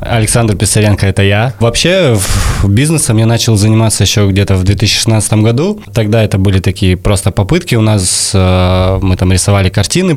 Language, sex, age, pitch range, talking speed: Russian, male, 20-39, 100-115 Hz, 160 wpm